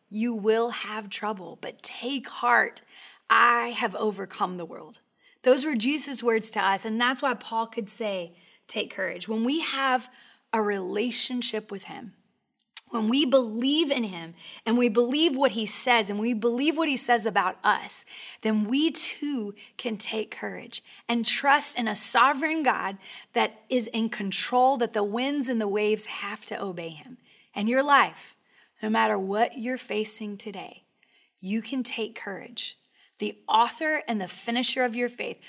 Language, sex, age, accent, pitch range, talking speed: English, female, 20-39, American, 210-255 Hz, 165 wpm